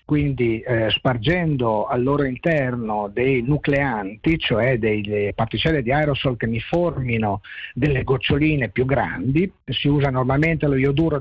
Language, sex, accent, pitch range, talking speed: Dutch, male, Italian, 115-160 Hz, 135 wpm